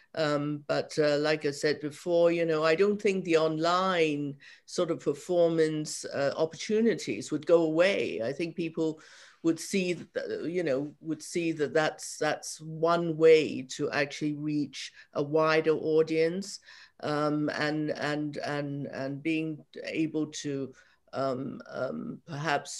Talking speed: 140 wpm